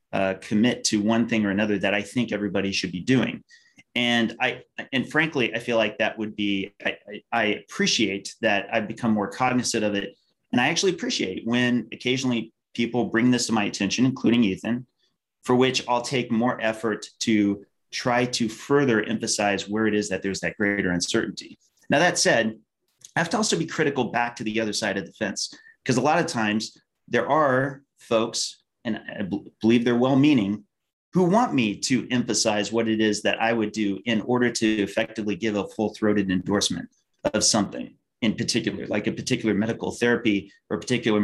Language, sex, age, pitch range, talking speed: English, male, 30-49, 105-125 Hz, 190 wpm